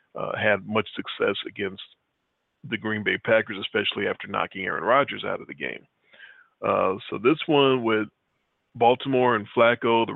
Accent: American